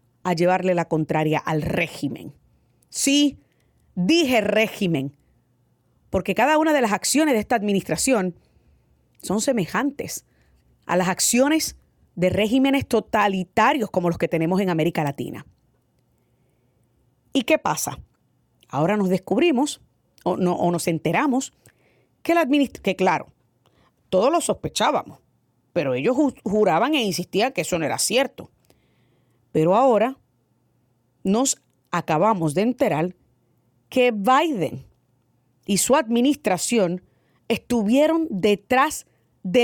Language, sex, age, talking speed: Spanish, female, 30-49, 115 wpm